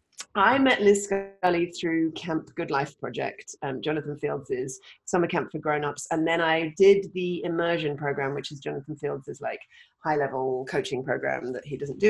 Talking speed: 180 wpm